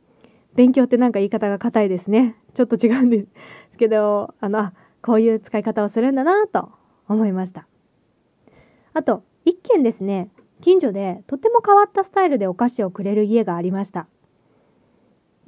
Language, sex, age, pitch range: Japanese, female, 20-39, 205-345 Hz